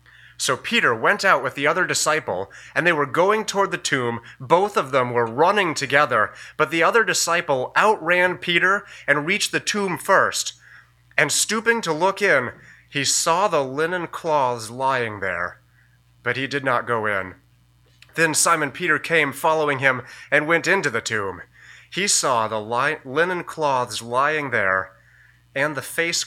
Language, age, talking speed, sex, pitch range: English, 30-49, 160 wpm, male, 110-150 Hz